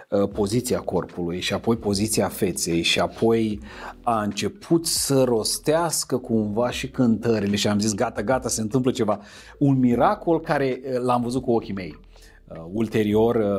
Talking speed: 140 wpm